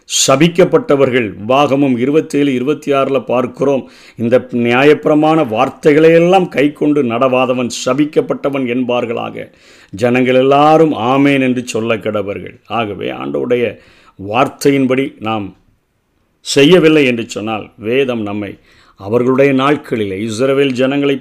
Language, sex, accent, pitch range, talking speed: Tamil, male, native, 120-145 Hz, 95 wpm